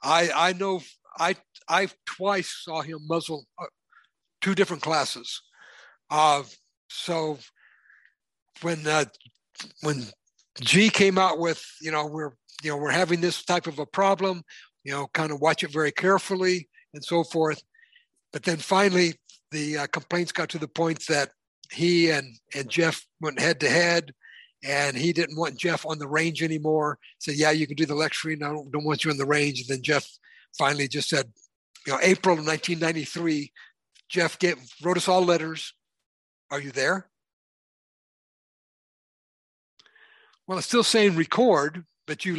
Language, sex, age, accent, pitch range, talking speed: English, male, 60-79, American, 150-175 Hz, 165 wpm